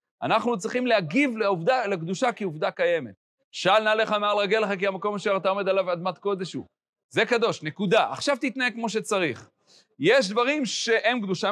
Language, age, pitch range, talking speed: Hebrew, 40-59, 155-215 Hz, 175 wpm